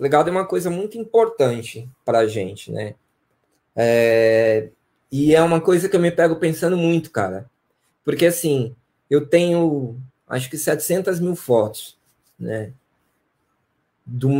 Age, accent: 20-39, Brazilian